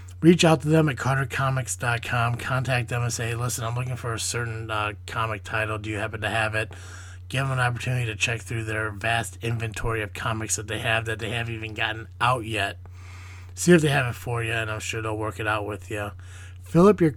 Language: English